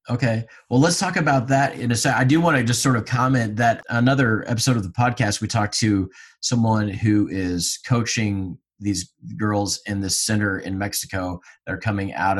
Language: English